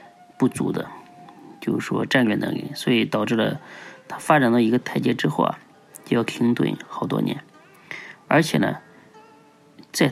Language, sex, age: Chinese, male, 20-39